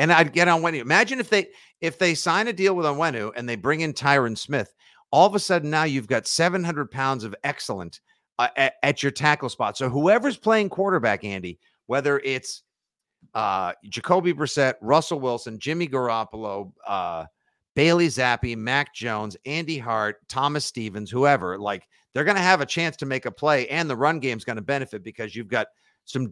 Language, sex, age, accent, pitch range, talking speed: English, male, 50-69, American, 115-160 Hz, 195 wpm